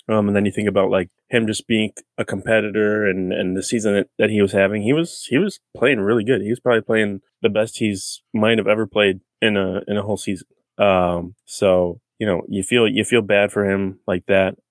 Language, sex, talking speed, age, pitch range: English, male, 235 wpm, 20-39, 95-120 Hz